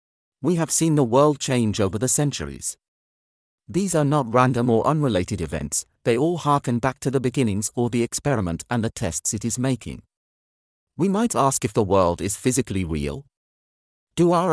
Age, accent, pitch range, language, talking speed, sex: 40-59, British, 95-135 Hz, English, 180 wpm, male